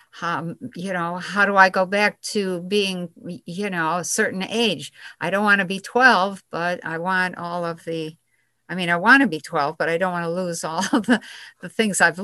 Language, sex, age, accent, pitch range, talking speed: English, female, 60-79, American, 170-210 Hz, 225 wpm